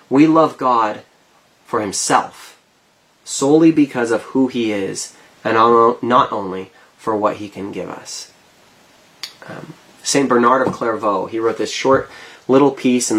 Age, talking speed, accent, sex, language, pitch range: 20-39, 150 wpm, American, male, English, 115-145 Hz